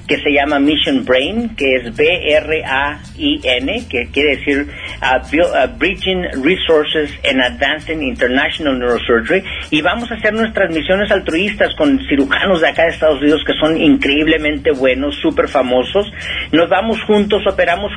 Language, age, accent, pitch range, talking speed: Spanish, 50-69, Mexican, 150-190 Hz, 145 wpm